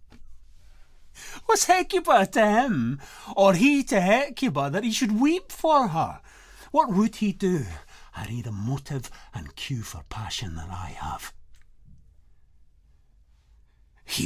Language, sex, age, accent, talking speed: English, male, 50-69, British, 125 wpm